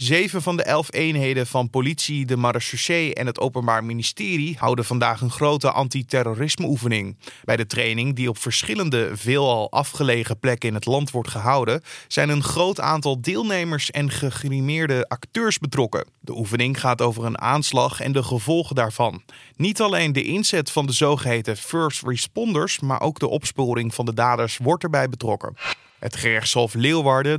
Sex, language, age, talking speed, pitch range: male, Dutch, 20-39, 160 wpm, 120-150 Hz